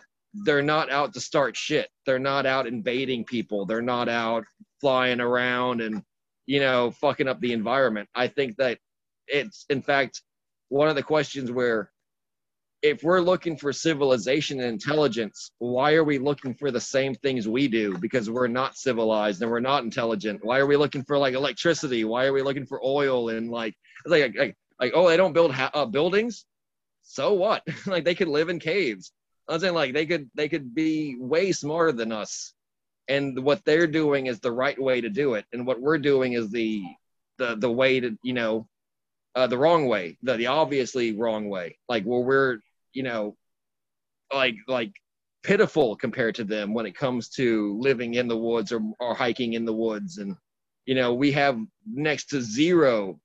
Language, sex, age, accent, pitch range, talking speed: English, male, 30-49, American, 115-145 Hz, 190 wpm